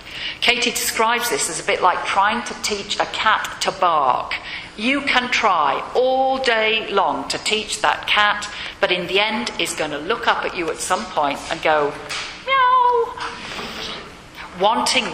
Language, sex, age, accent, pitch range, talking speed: English, female, 50-69, British, 195-250 Hz, 165 wpm